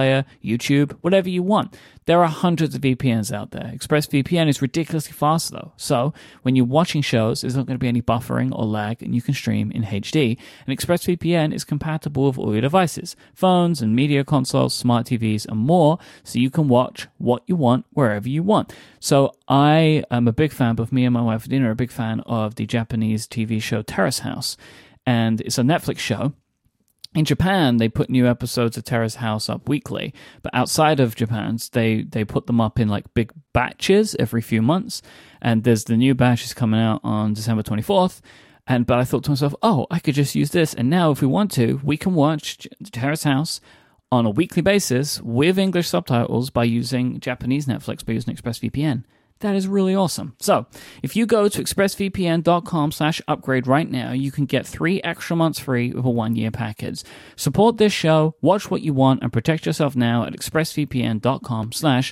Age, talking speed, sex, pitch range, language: 30-49, 195 wpm, male, 115-155 Hz, English